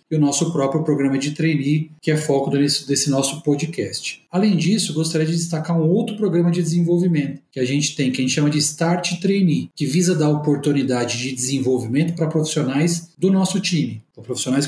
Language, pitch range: Portuguese, 135-170 Hz